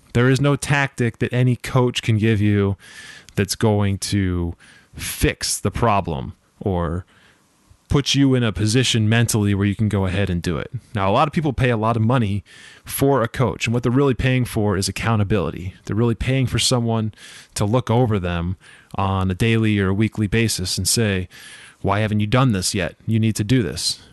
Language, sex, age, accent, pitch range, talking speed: English, male, 20-39, American, 100-125 Hz, 200 wpm